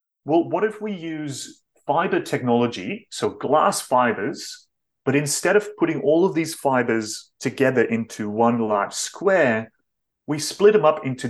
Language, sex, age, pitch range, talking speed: English, male, 30-49, 115-155 Hz, 150 wpm